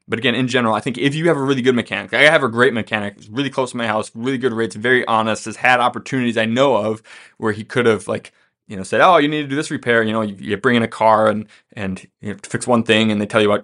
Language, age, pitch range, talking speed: English, 20-39, 105-130 Hz, 305 wpm